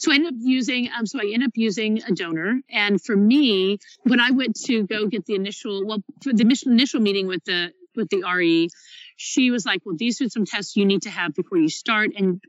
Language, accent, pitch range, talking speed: English, American, 180-235 Hz, 240 wpm